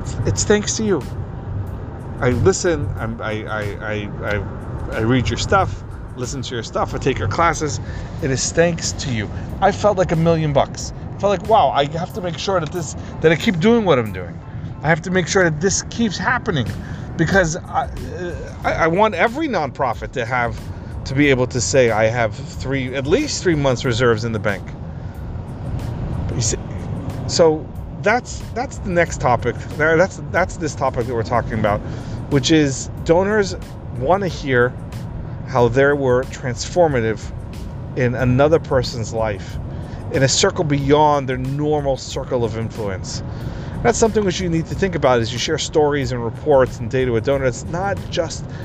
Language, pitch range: English, 110-150 Hz